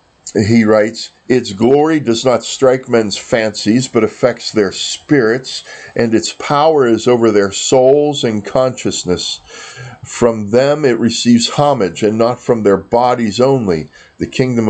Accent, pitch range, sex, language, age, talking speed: American, 110-130 Hz, male, English, 50-69, 145 wpm